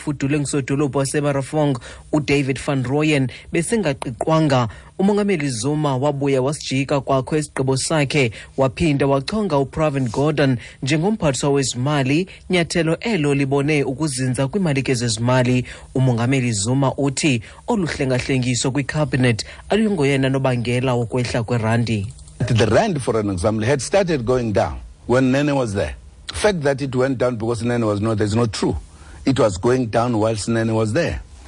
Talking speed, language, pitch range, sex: 145 wpm, English, 115-145 Hz, male